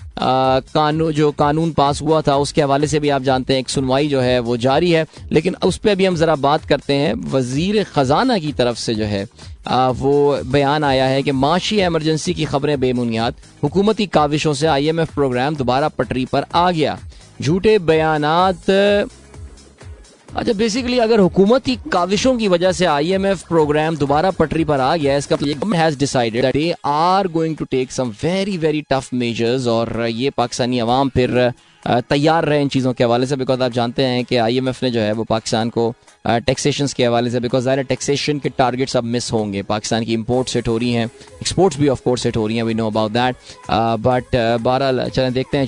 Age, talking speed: 20-39, 155 wpm